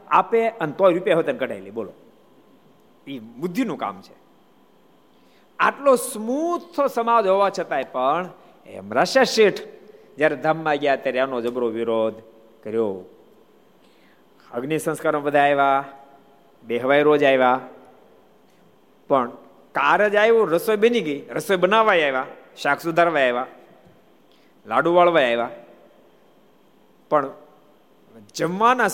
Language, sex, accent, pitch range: Gujarati, male, native, 125-180 Hz